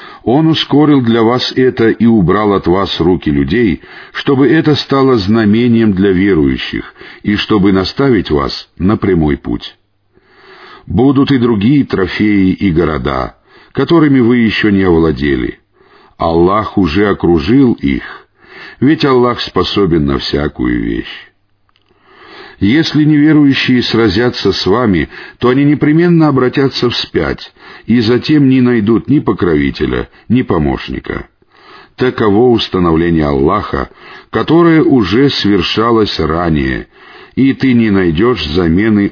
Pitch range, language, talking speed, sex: 90-130 Hz, Russian, 115 wpm, male